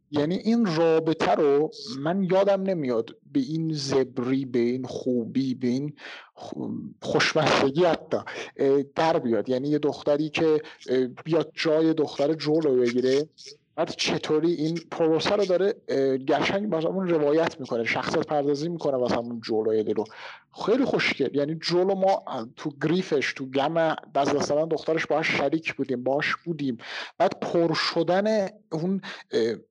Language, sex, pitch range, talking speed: Persian, male, 135-175 Hz, 130 wpm